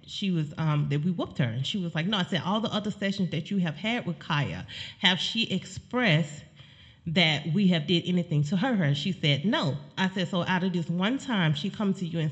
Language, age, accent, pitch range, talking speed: English, 30-49, American, 145-190 Hz, 250 wpm